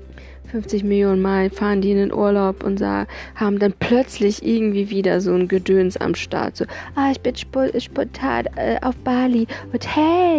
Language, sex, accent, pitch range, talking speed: German, female, German, 190-255 Hz, 170 wpm